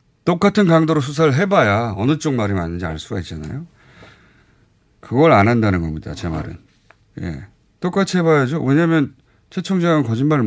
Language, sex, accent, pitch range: Korean, male, native, 105-155 Hz